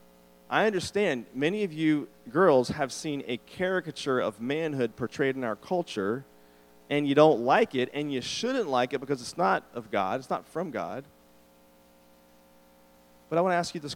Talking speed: 180 wpm